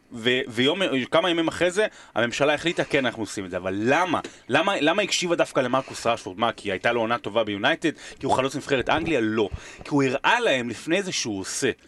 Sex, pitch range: male, 115-145 Hz